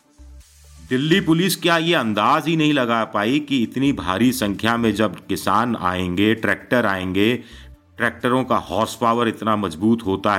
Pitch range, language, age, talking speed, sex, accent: 105-140 Hz, Hindi, 50-69, 150 wpm, male, native